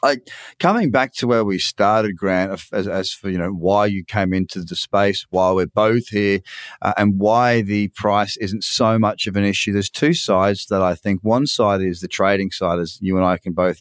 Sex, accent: male, Australian